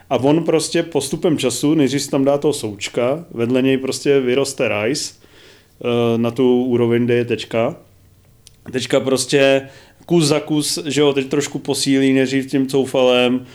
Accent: native